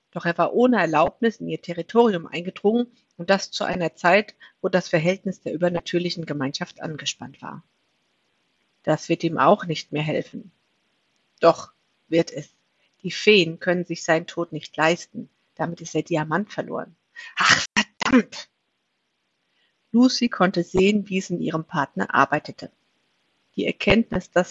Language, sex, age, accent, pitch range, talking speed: German, female, 50-69, German, 165-195 Hz, 145 wpm